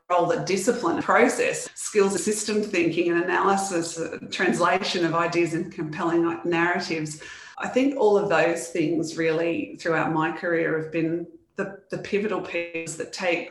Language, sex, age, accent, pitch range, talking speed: English, female, 30-49, Australian, 160-175 Hz, 145 wpm